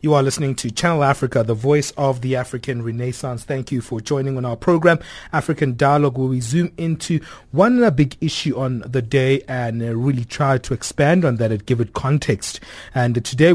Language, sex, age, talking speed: English, male, 30-49, 195 wpm